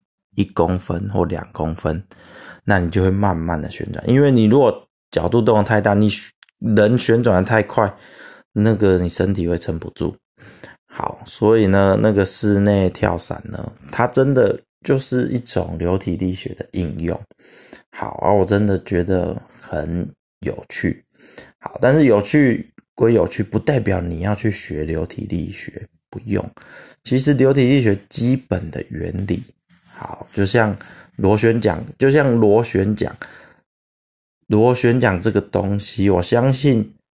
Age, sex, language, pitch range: 20-39, male, Chinese, 90-115 Hz